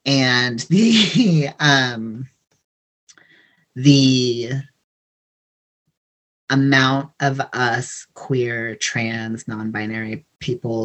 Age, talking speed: 30-49, 60 wpm